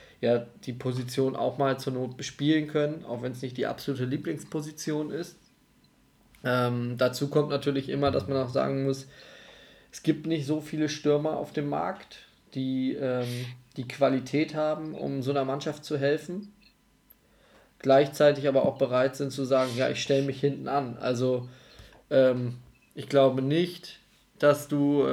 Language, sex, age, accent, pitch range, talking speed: German, male, 20-39, German, 130-155 Hz, 160 wpm